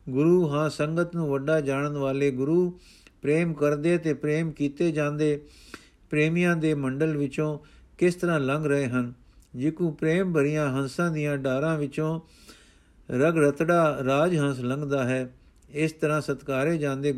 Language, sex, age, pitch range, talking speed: Punjabi, male, 50-69, 135-160 Hz, 140 wpm